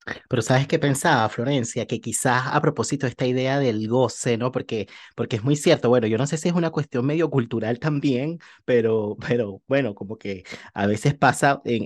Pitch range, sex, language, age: 125-165 Hz, male, Spanish, 30-49